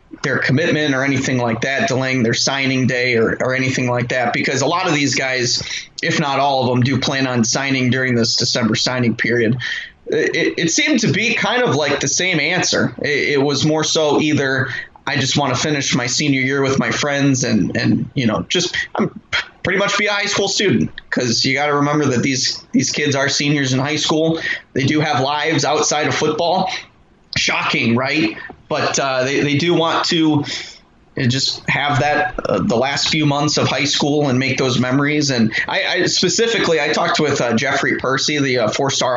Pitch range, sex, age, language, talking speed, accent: 130-150 Hz, male, 20-39, English, 205 wpm, American